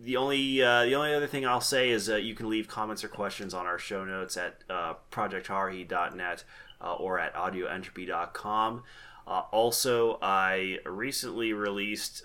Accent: American